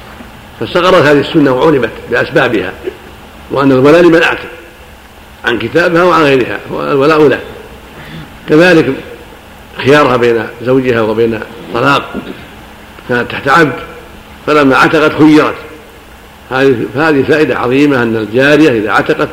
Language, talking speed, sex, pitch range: Arabic, 105 wpm, male, 120-150 Hz